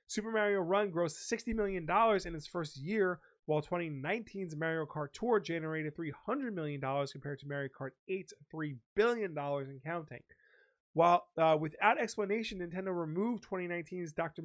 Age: 30-49